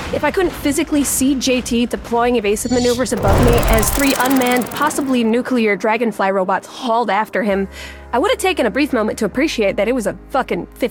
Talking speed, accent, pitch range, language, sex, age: 185 wpm, American, 215-265 Hz, English, female, 20-39